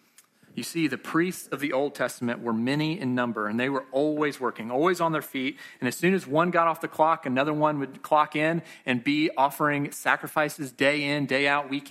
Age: 30-49